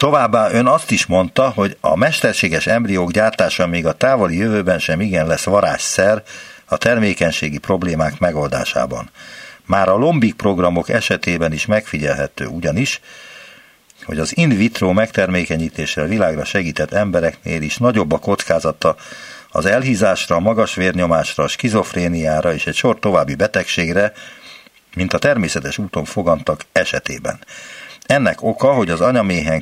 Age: 60-79